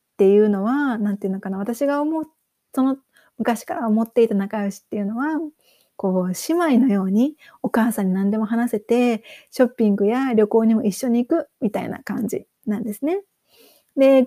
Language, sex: Japanese, female